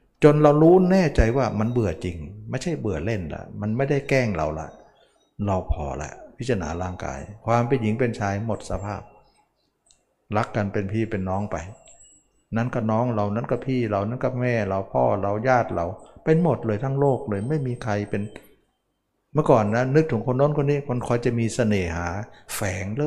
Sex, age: male, 60-79